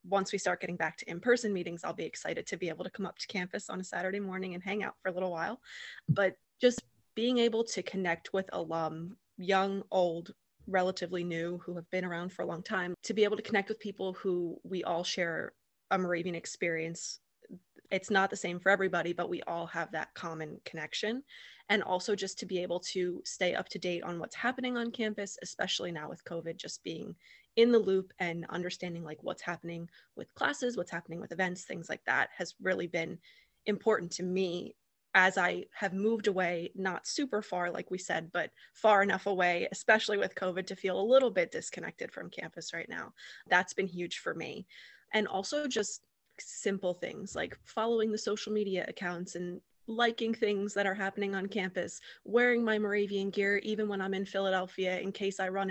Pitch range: 175-210 Hz